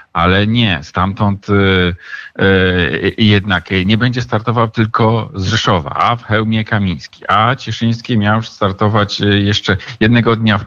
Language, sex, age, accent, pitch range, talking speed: Polish, male, 50-69, native, 100-130 Hz, 140 wpm